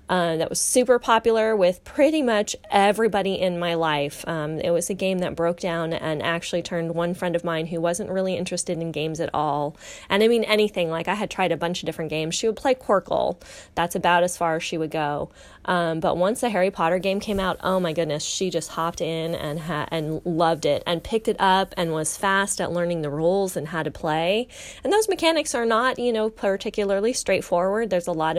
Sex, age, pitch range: female, 20-39, 160-195 Hz